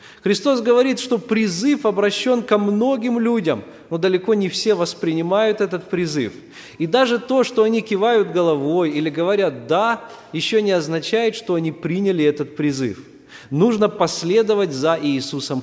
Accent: native